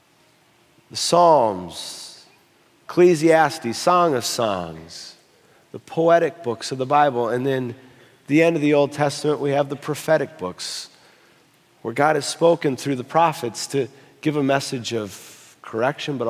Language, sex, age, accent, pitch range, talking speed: English, male, 40-59, American, 135-175 Hz, 145 wpm